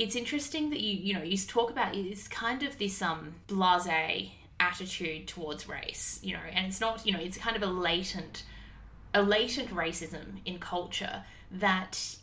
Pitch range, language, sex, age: 170-200 Hz, English, female, 20-39